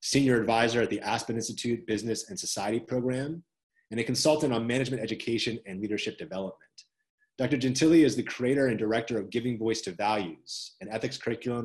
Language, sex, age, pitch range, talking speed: English, male, 30-49, 105-130 Hz, 175 wpm